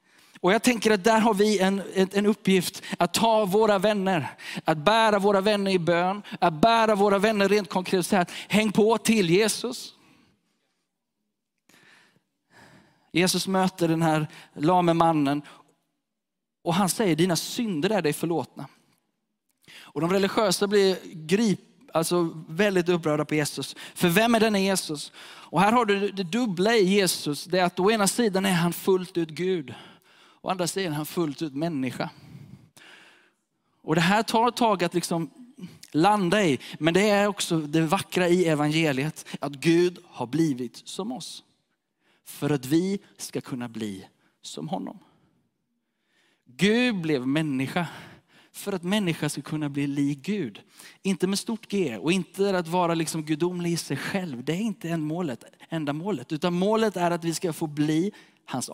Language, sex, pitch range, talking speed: Swedish, male, 160-205 Hz, 160 wpm